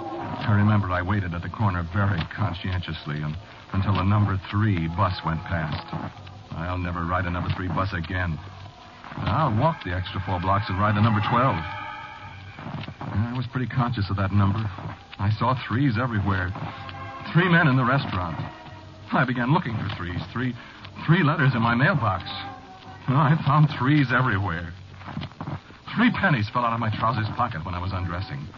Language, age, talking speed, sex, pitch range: English, 60-79, 165 wpm, male, 95-130 Hz